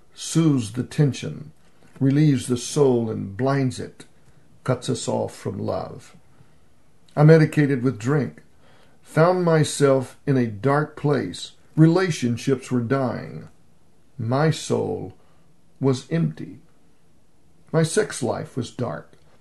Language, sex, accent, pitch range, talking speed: English, male, American, 120-150 Hz, 110 wpm